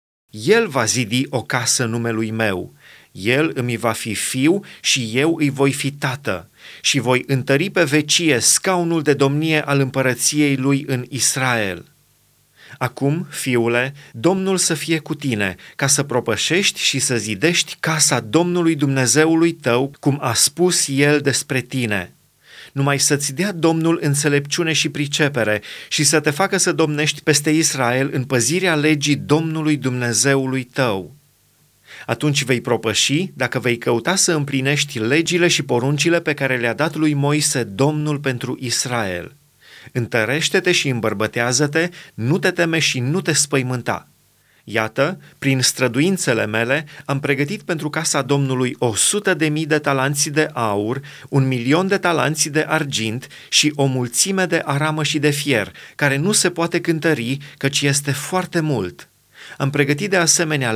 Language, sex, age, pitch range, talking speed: Romanian, male, 30-49, 130-160 Hz, 145 wpm